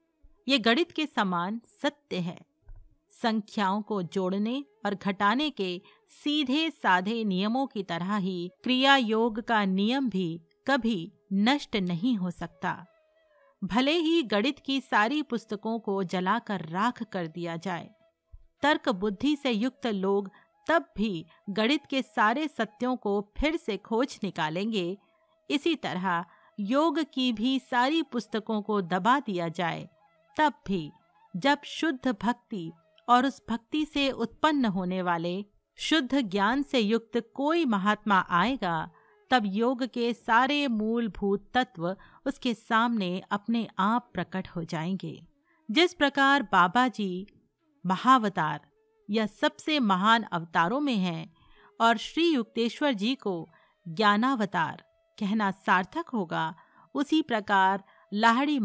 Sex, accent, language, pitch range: female, native, Hindi, 190-270 Hz